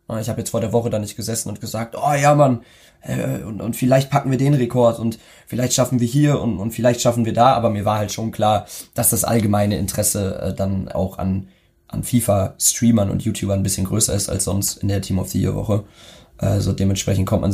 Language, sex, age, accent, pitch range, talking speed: German, male, 20-39, German, 100-120 Hz, 220 wpm